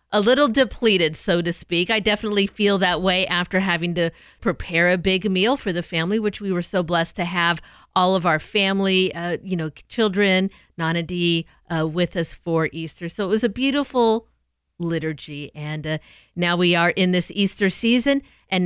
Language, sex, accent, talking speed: English, female, American, 185 wpm